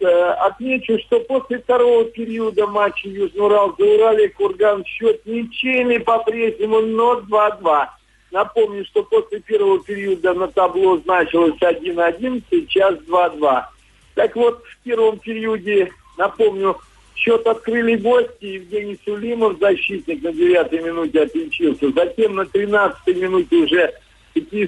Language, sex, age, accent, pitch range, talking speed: Russian, male, 50-69, native, 195-260 Hz, 120 wpm